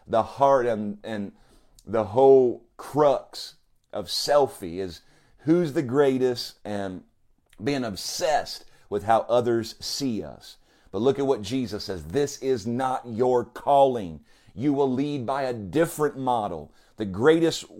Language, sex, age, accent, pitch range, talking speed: English, male, 40-59, American, 110-145 Hz, 140 wpm